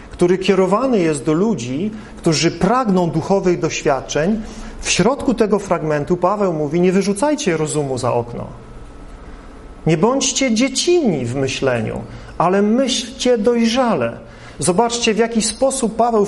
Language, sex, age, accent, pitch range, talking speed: Polish, male, 40-59, native, 175-245 Hz, 120 wpm